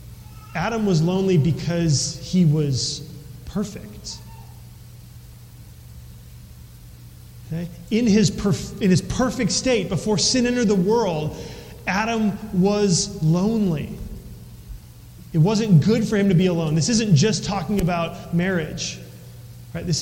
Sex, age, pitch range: male, 30-49, 145-195 Hz